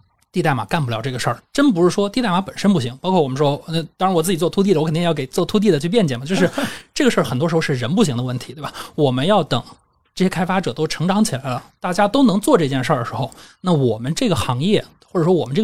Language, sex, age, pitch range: Chinese, male, 20-39, 135-205 Hz